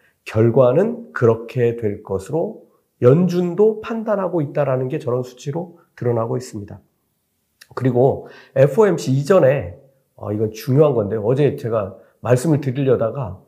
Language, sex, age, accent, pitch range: Korean, male, 40-59, native, 115-170 Hz